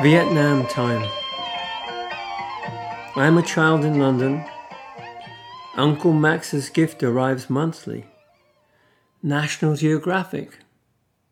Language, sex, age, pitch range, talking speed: English, male, 50-69, 120-160 Hz, 80 wpm